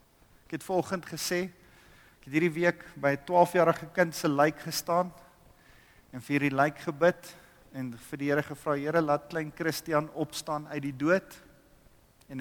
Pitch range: 130-175 Hz